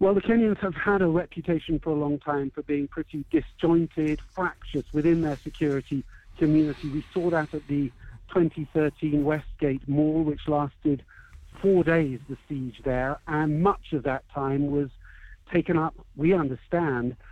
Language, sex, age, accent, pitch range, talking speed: English, male, 60-79, British, 145-170 Hz, 155 wpm